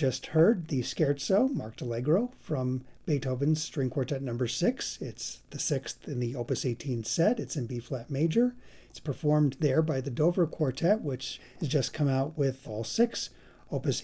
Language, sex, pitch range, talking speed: English, male, 125-155 Hz, 170 wpm